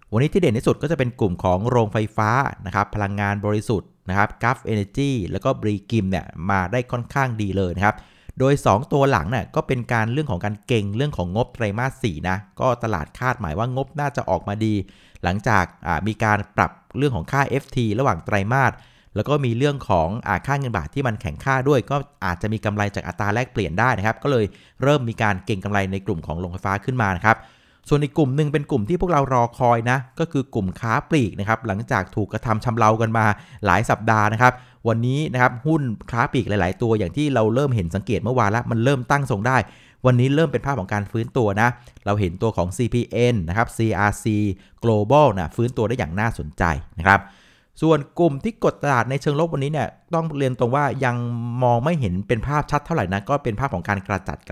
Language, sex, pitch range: Thai, male, 100-135 Hz